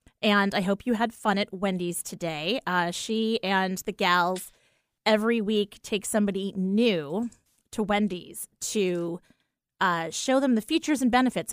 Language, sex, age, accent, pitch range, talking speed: English, female, 30-49, American, 190-240 Hz, 150 wpm